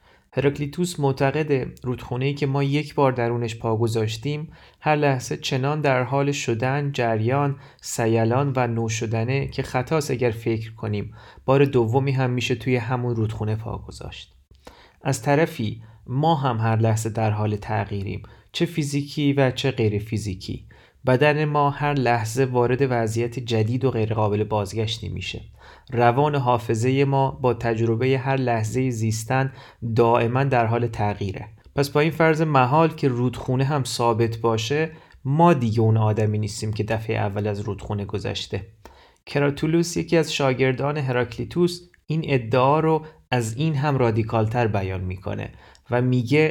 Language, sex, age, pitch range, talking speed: Persian, male, 30-49, 110-140 Hz, 140 wpm